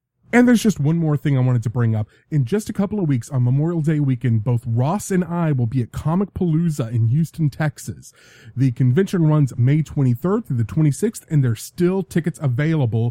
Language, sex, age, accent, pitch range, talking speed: English, male, 30-49, American, 125-165 Hz, 210 wpm